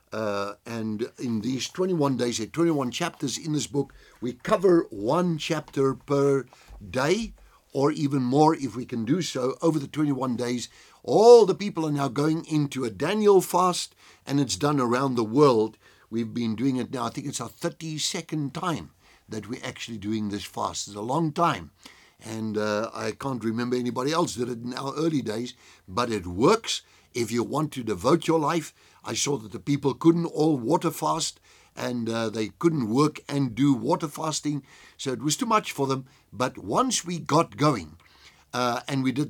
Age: 60-79